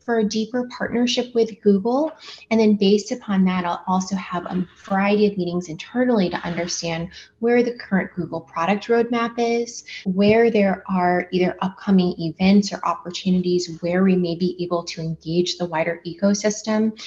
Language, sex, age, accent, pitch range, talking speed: English, female, 20-39, American, 165-200 Hz, 160 wpm